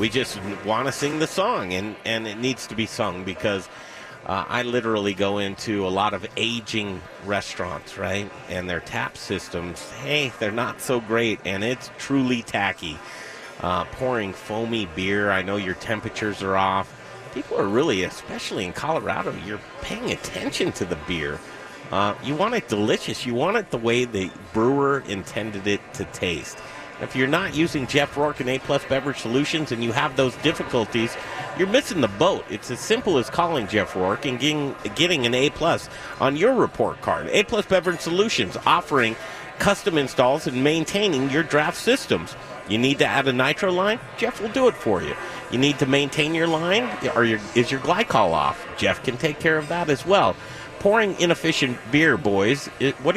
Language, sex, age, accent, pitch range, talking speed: English, male, 30-49, American, 110-150 Hz, 180 wpm